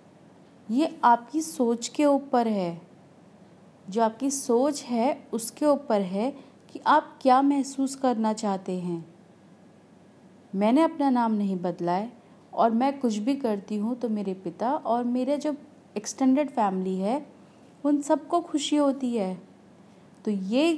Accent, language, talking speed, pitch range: native, Hindi, 140 wpm, 200-275 Hz